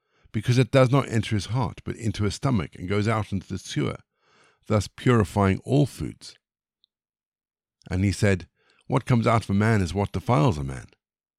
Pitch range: 95-120 Hz